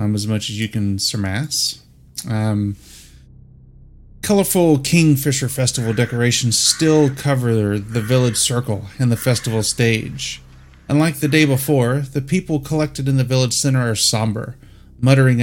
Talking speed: 135 wpm